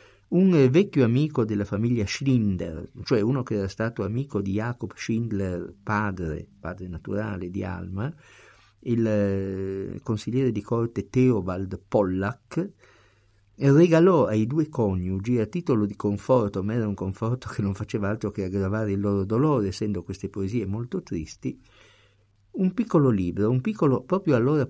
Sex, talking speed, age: male, 145 wpm, 50-69